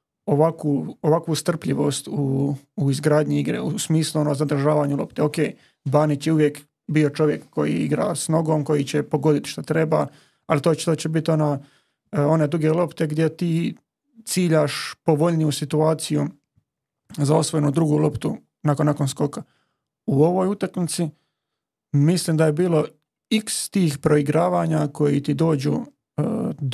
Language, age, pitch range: Croatian, 30-49, 145-165 Hz